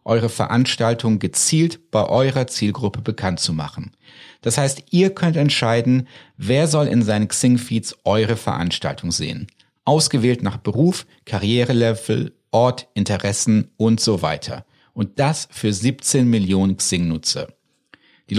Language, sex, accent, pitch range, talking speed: German, male, German, 110-150 Hz, 125 wpm